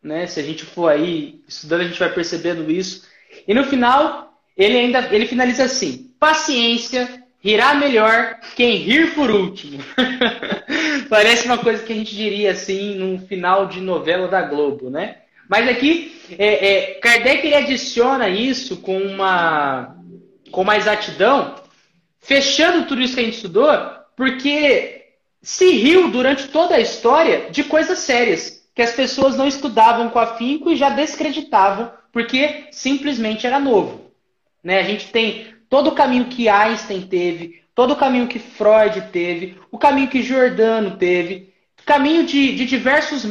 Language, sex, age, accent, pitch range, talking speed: Portuguese, male, 20-39, Brazilian, 190-270 Hz, 155 wpm